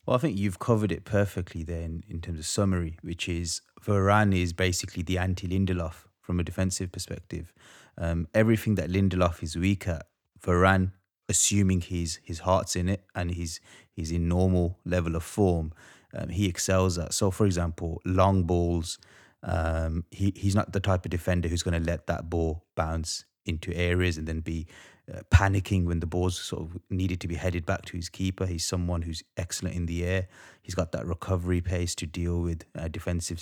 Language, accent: English, British